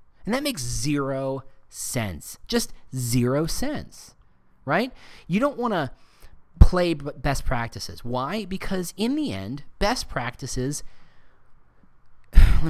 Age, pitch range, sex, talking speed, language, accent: 30-49, 110-165 Hz, male, 110 wpm, English, American